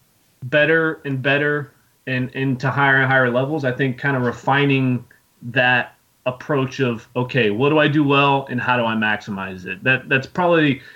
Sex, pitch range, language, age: male, 115-140 Hz, English, 30-49